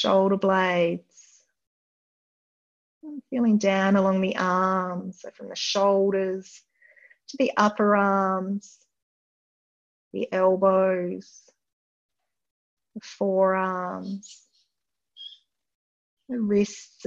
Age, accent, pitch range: 30-49, Australian, 185-215 Hz